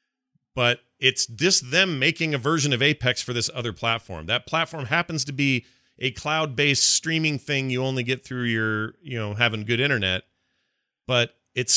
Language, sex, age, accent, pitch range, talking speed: English, male, 40-59, American, 105-140 Hz, 175 wpm